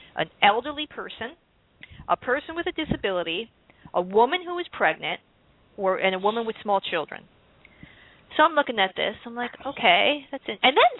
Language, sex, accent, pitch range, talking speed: English, female, American, 195-320 Hz, 175 wpm